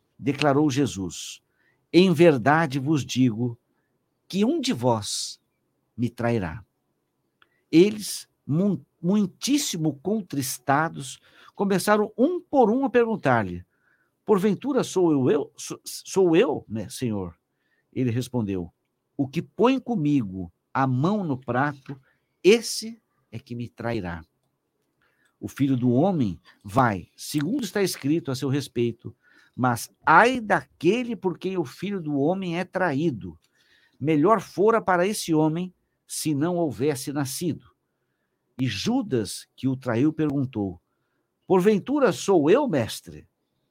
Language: Portuguese